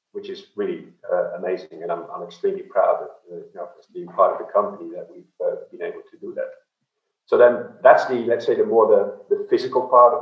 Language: English